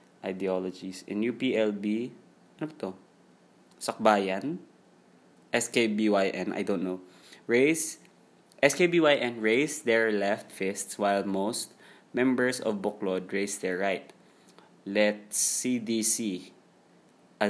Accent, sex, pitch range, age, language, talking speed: Filipino, male, 95-115 Hz, 20-39, English, 90 wpm